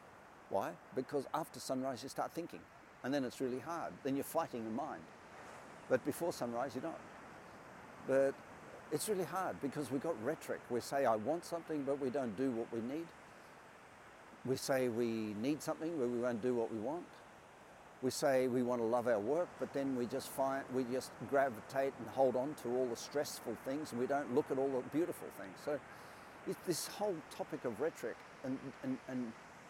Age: 50-69